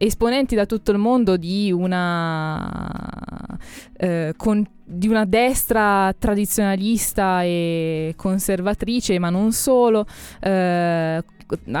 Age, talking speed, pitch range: 20-39, 95 wpm, 170-210 Hz